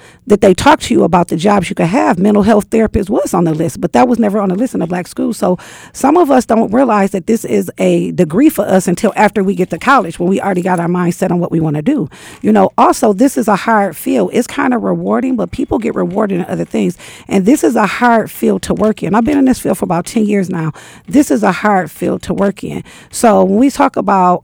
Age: 50-69